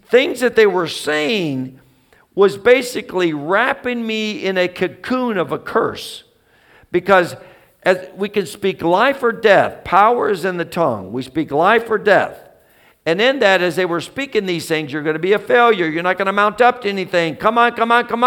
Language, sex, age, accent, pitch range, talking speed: English, male, 60-79, American, 145-200 Hz, 200 wpm